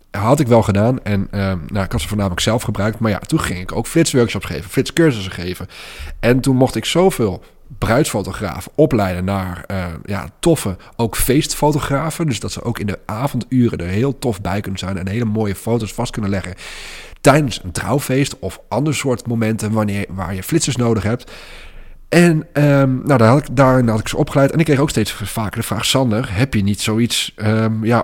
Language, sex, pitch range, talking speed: Dutch, male, 95-130 Hz, 200 wpm